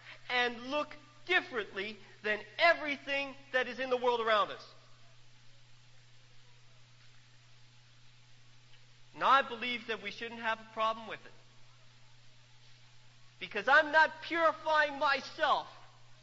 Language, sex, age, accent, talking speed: English, male, 40-59, American, 105 wpm